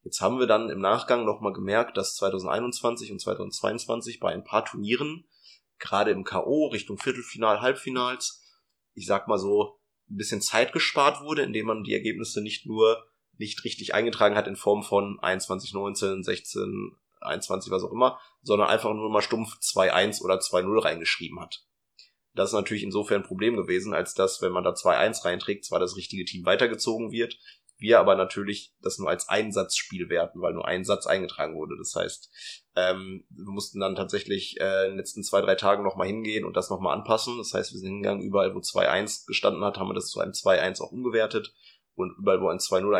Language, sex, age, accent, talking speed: German, male, 20-39, German, 195 wpm